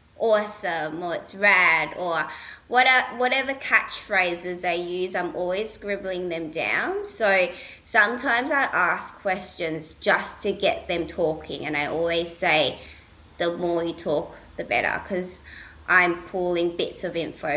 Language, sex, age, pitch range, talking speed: English, female, 20-39, 165-200 Hz, 135 wpm